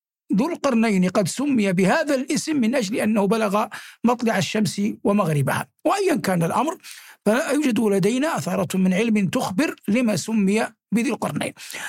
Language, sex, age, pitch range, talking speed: Arabic, male, 60-79, 205-275 Hz, 135 wpm